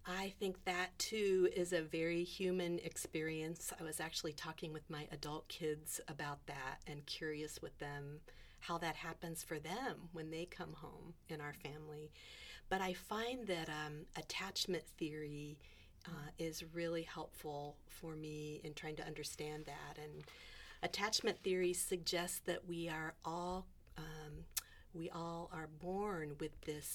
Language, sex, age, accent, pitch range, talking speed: English, female, 40-59, American, 155-180 Hz, 150 wpm